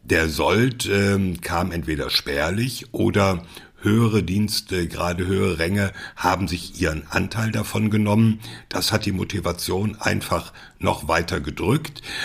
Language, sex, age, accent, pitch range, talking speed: German, male, 60-79, German, 90-115 Hz, 125 wpm